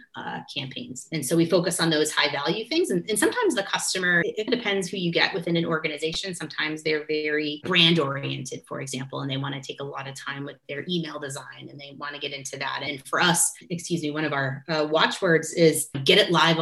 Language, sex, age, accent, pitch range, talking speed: English, female, 30-49, American, 140-170 Hz, 240 wpm